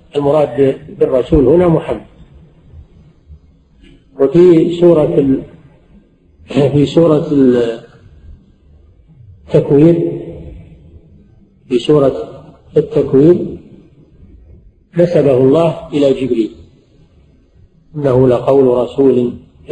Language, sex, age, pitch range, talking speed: Arabic, male, 50-69, 120-155 Hz, 60 wpm